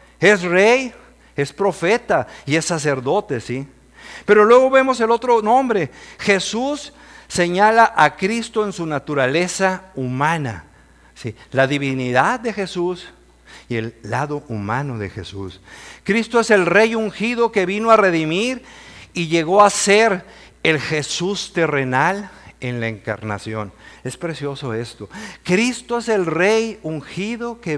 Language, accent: Spanish, Mexican